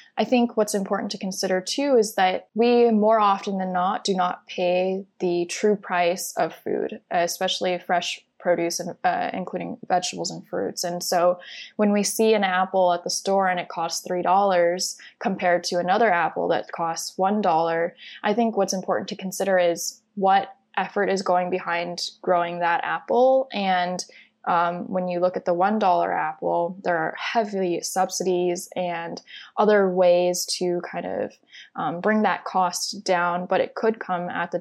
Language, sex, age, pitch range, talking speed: English, female, 20-39, 175-195 Hz, 170 wpm